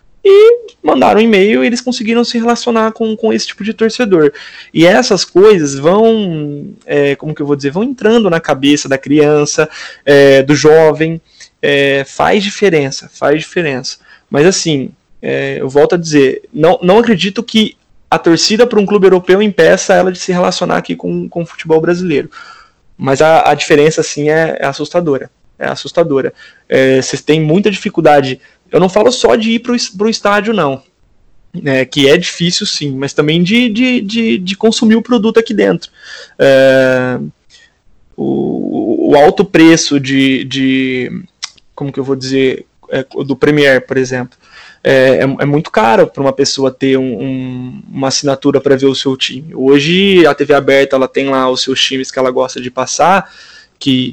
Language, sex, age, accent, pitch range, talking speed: Portuguese, male, 20-39, Brazilian, 135-210 Hz, 170 wpm